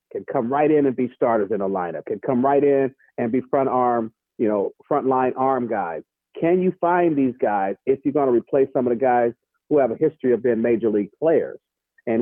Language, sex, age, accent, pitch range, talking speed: English, male, 50-69, American, 135-210 Hz, 225 wpm